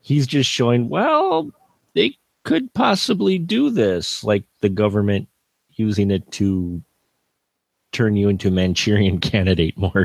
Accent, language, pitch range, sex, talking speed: American, English, 115-165 Hz, male, 130 wpm